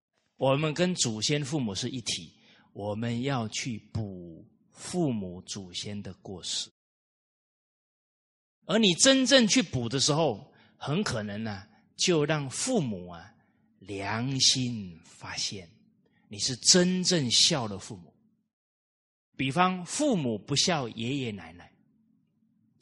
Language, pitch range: Chinese, 105-170 Hz